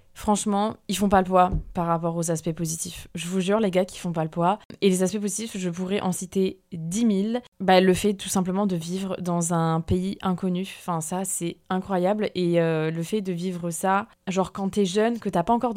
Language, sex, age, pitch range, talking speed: French, female, 20-39, 180-210 Hz, 230 wpm